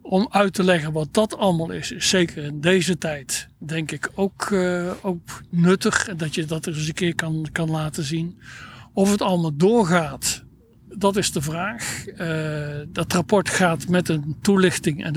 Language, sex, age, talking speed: Dutch, male, 60-79, 180 wpm